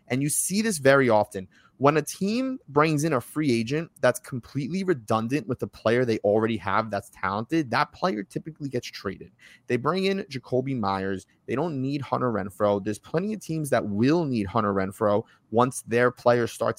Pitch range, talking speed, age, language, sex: 110-150 Hz, 190 wpm, 20-39, English, male